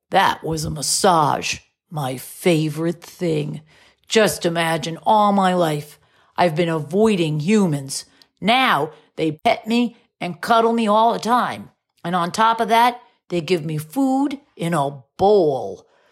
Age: 40-59